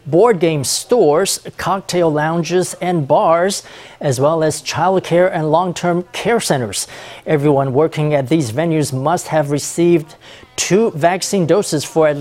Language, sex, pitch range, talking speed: English, male, 150-185 Hz, 145 wpm